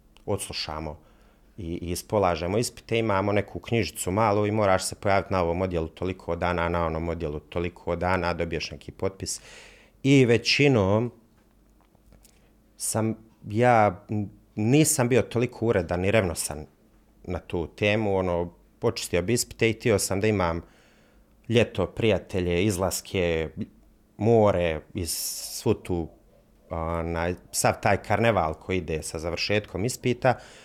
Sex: male